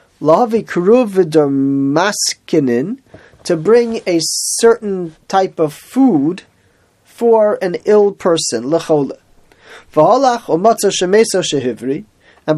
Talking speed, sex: 55 wpm, male